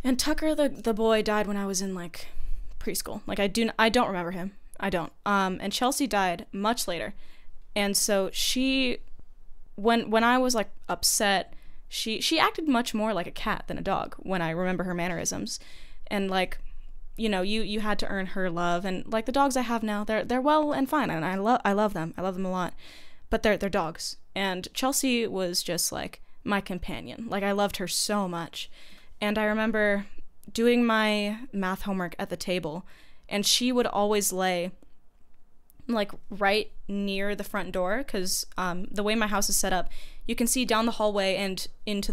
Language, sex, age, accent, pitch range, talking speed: English, female, 10-29, American, 185-220 Hz, 200 wpm